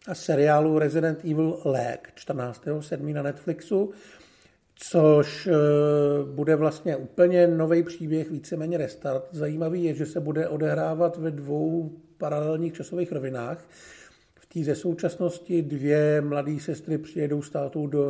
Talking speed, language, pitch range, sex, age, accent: 120 wpm, Czech, 150-170 Hz, male, 50-69, native